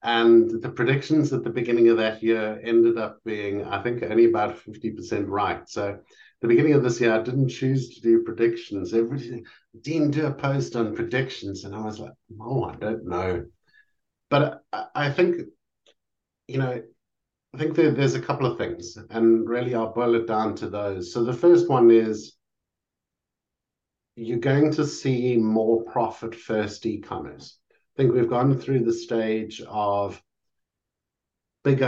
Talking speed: 170 wpm